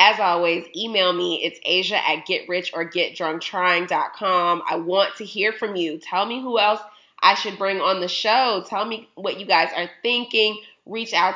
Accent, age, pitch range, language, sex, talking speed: American, 20-39, 175-215 Hz, English, female, 175 wpm